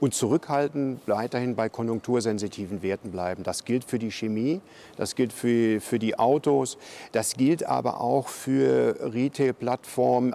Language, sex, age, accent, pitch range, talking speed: German, male, 50-69, German, 110-125 Hz, 140 wpm